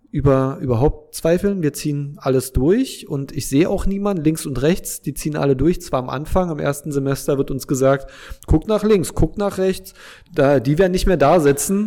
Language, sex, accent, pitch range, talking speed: German, male, German, 130-160 Hz, 205 wpm